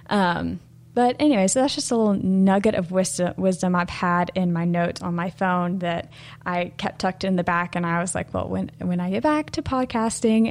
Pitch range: 175-215 Hz